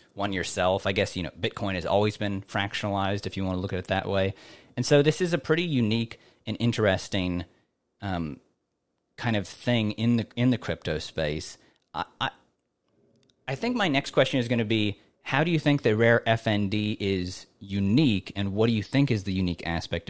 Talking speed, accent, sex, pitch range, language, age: 205 wpm, American, male, 95-120 Hz, English, 30-49